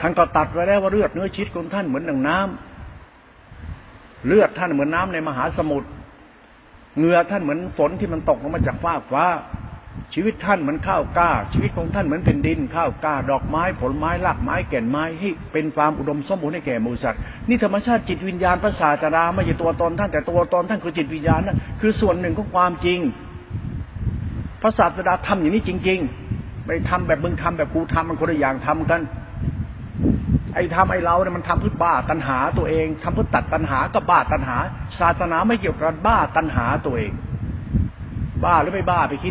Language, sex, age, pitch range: Thai, male, 60-79, 140-200 Hz